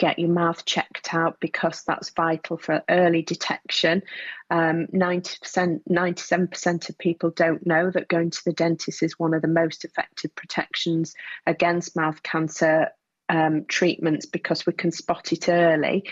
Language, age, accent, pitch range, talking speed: English, 30-49, British, 165-185 Hz, 150 wpm